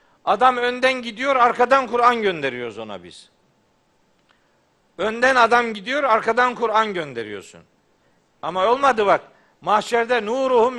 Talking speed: 105 wpm